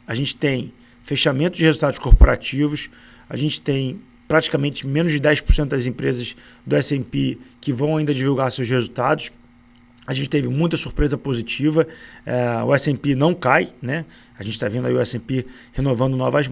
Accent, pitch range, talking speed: Brazilian, 125-150 Hz, 165 wpm